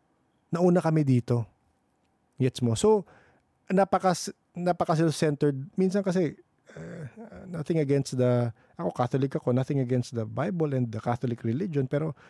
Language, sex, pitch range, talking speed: English, male, 115-160 Hz, 130 wpm